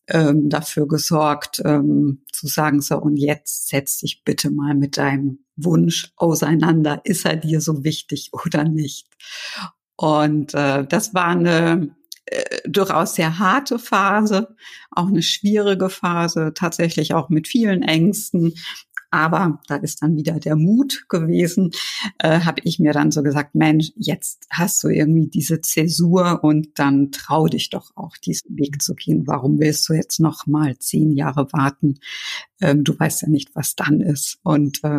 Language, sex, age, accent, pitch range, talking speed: German, female, 50-69, German, 150-175 Hz, 150 wpm